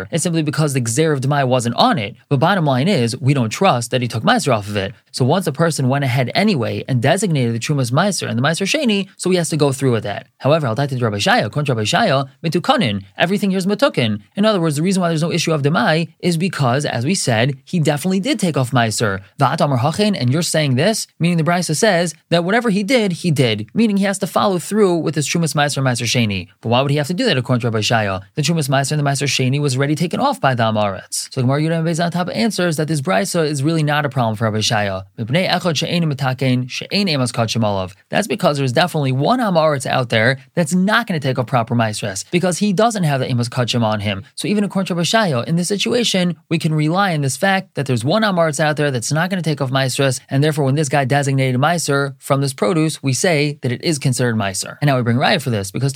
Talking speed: 245 wpm